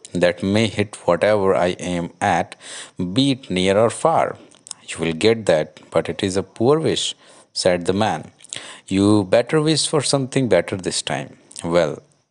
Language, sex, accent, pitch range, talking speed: English, male, Indian, 90-110 Hz, 165 wpm